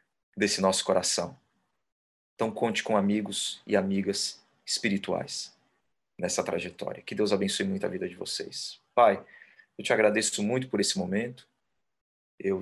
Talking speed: 140 wpm